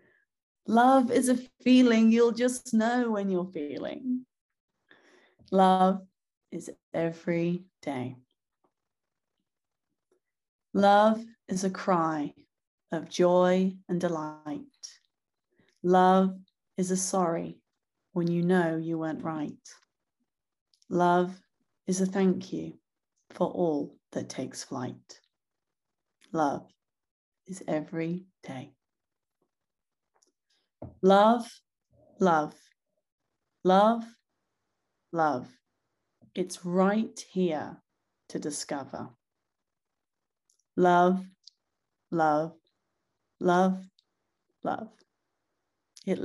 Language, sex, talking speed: English, female, 80 wpm